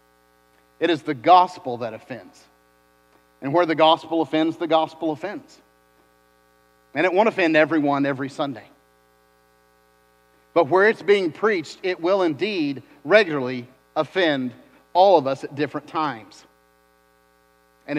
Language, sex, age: English, male, 50-69